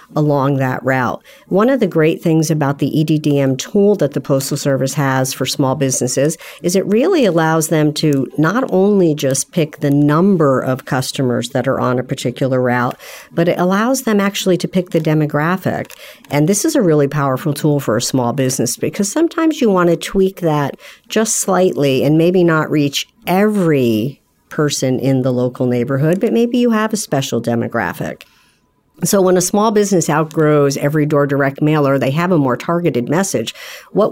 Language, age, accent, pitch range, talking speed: English, 50-69, American, 135-175 Hz, 185 wpm